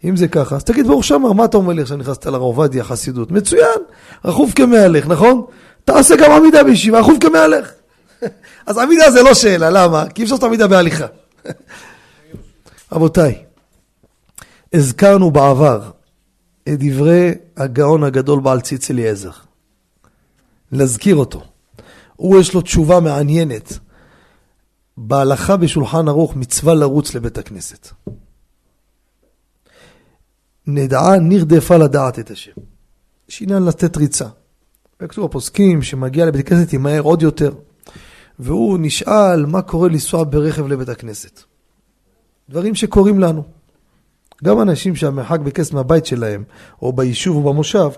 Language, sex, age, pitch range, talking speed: Hebrew, male, 40-59, 135-185 Hz, 125 wpm